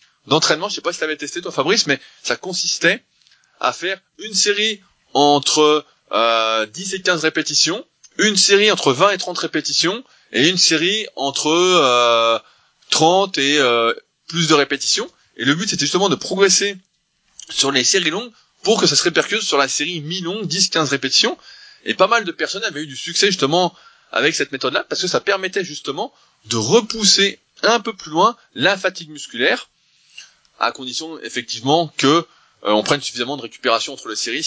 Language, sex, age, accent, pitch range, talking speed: French, male, 20-39, French, 135-190 Hz, 180 wpm